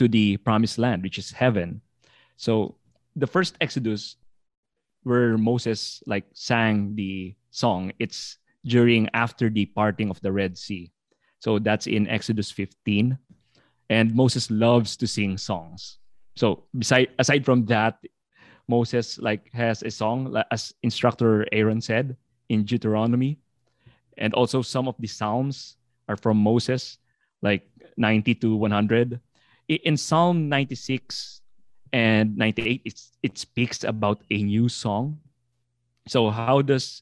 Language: English